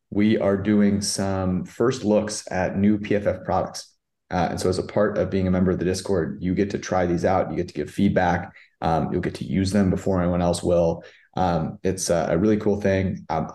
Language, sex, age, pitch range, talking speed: English, male, 30-49, 95-110 Hz, 225 wpm